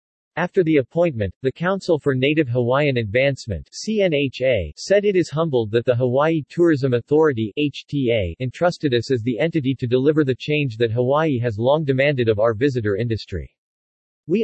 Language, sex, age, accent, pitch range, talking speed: English, male, 50-69, American, 120-150 Hz, 155 wpm